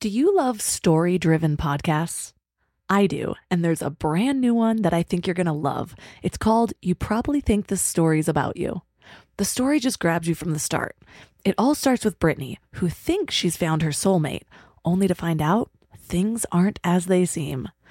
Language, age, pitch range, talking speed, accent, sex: English, 20-39, 175-220 Hz, 190 wpm, American, female